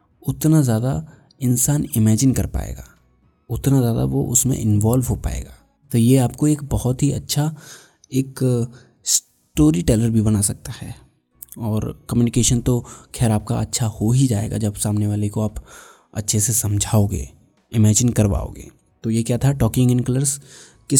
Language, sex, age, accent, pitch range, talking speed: Hindi, male, 20-39, native, 105-135 Hz, 155 wpm